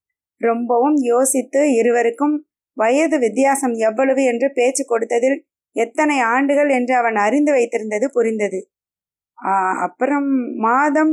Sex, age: female, 20-39